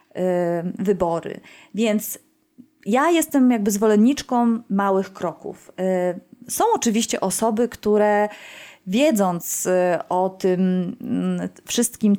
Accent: native